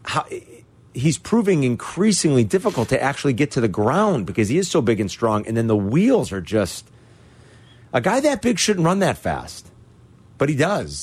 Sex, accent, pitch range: male, American, 105-150 Hz